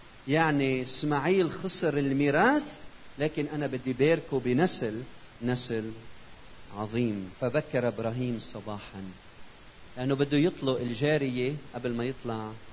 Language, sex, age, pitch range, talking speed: Arabic, male, 40-59, 115-145 Hz, 100 wpm